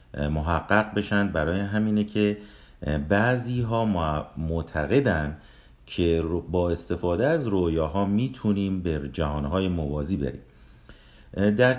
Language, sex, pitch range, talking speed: Persian, male, 80-115 Hz, 100 wpm